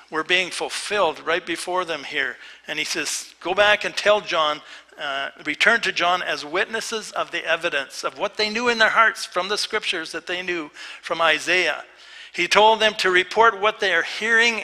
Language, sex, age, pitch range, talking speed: English, male, 60-79, 155-210 Hz, 195 wpm